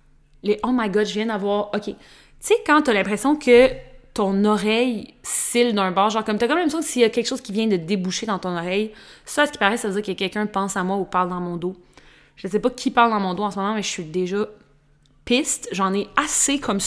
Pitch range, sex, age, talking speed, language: 195-250 Hz, female, 30-49, 280 wpm, French